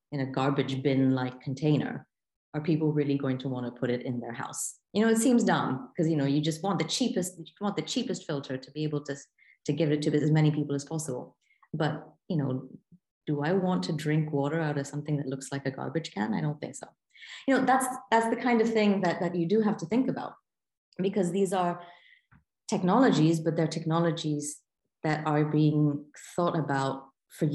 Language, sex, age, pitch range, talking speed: English, female, 30-49, 135-175 Hz, 215 wpm